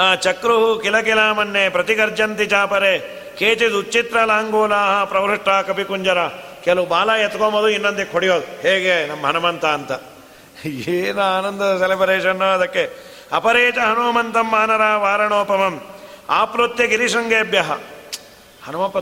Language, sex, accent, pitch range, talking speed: Kannada, male, native, 185-230 Hz, 105 wpm